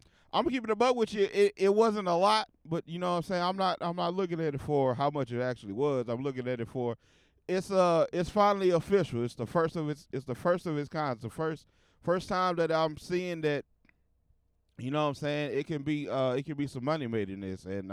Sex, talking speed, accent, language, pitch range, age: male, 260 wpm, American, English, 115-170 Hz, 20-39